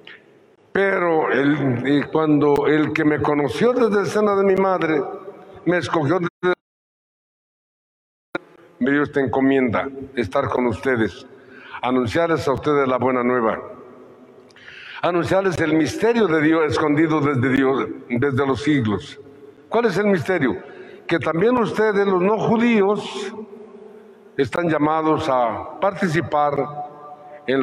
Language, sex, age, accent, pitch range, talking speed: Spanish, male, 60-79, Mexican, 140-200 Hz, 120 wpm